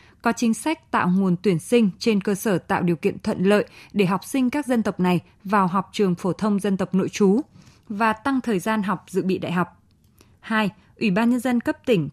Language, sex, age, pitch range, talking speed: Vietnamese, female, 20-39, 180-230 Hz, 235 wpm